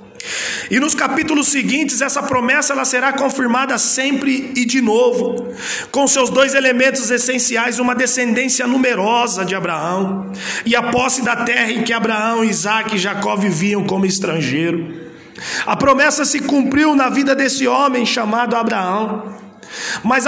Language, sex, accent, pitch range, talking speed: Portuguese, male, Brazilian, 220-265 Hz, 140 wpm